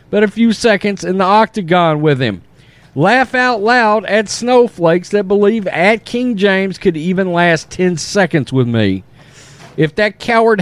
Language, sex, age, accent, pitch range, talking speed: English, male, 50-69, American, 125-185 Hz, 165 wpm